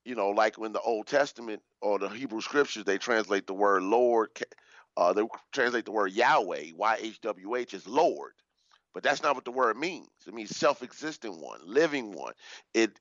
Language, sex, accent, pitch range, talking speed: English, male, American, 115-145 Hz, 180 wpm